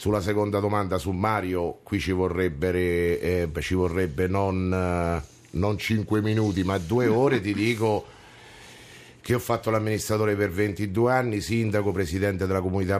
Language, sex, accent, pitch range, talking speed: Italian, male, native, 90-105 Hz, 135 wpm